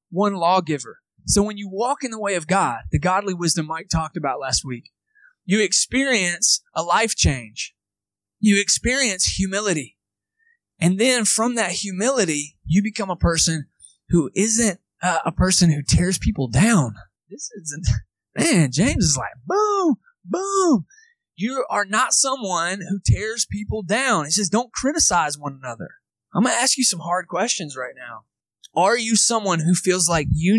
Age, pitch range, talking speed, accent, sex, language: 20-39, 145-215 Hz, 165 wpm, American, male, English